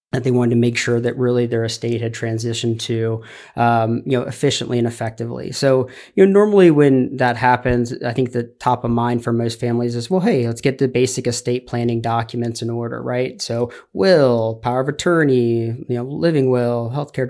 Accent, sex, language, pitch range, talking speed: American, male, English, 120-130 Hz, 200 wpm